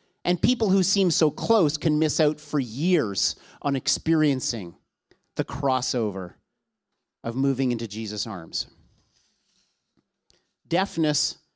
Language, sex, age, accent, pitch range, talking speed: English, male, 40-59, American, 135-190 Hz, 110 wpm